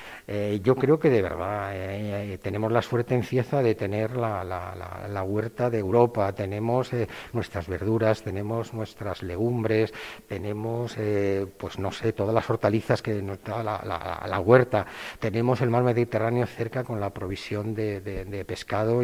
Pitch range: 100-120 Hz